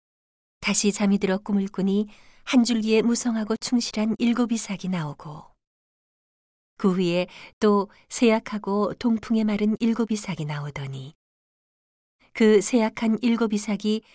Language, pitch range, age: Korean, 180-220 Hz, 40-59